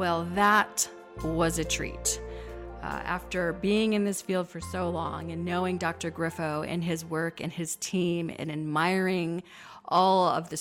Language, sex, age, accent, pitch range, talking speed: English, female, 40-59, American, 165-205 Hz, 165 wpm